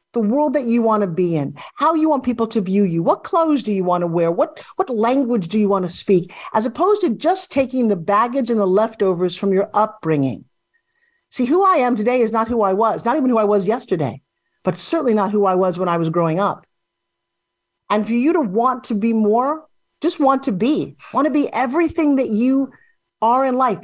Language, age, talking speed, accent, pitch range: English, 50-69, 230 wpm, American, 195-270 Hz